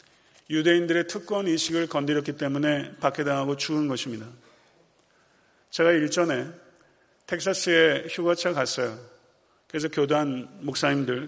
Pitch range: 150-180 Hz